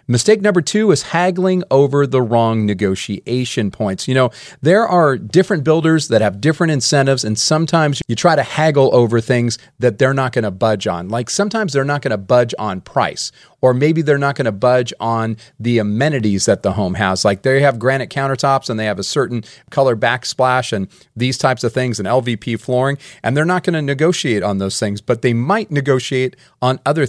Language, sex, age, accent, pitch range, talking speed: English, male, 40-59, American, 110-140 Hz, 200 wpm